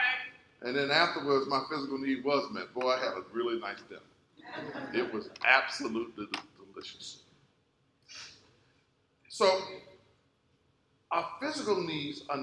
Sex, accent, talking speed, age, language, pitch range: male, American, 115 wpm, 50-69, English, 140-210 Hz